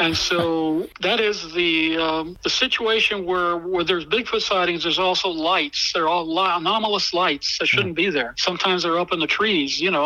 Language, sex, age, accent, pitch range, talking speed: English, male, 60-79, American, 155-185 Hz, 195 wpm